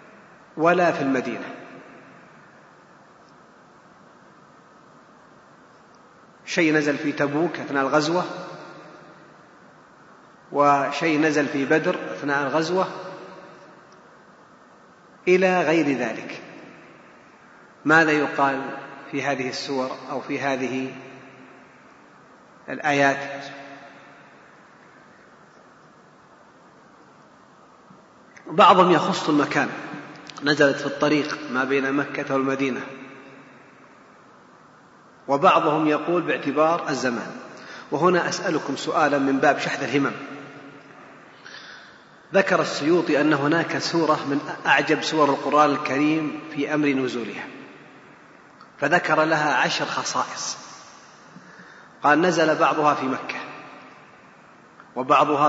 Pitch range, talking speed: 135-155 Hz, 75 wpm